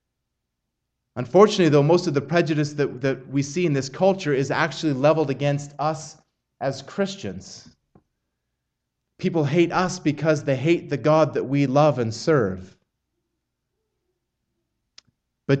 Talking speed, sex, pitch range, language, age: 130 wpm, male, 140-170 Hz, English, 30-49